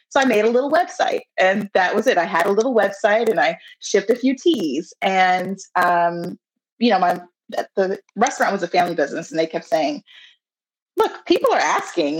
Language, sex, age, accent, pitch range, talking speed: English, female, 30-49, American, 190-295 Hz, 195 wpm